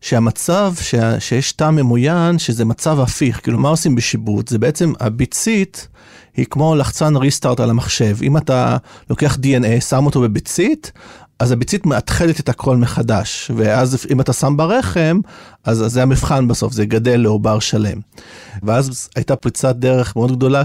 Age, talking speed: 40-59, 155 wpm